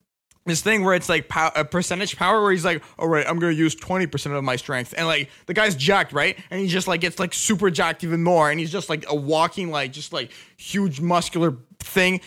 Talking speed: 240 wpm